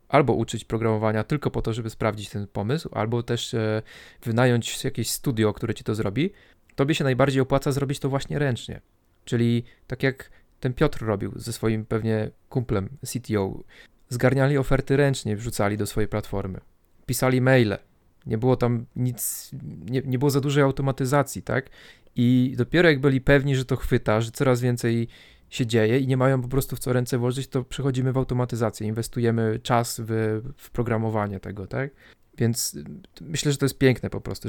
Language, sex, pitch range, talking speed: Polish, male, 115-135 Hz, 170 wpm